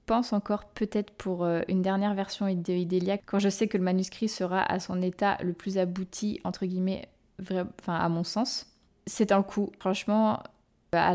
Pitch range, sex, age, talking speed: 185-210 Hz, female, 20-39, 170 wpm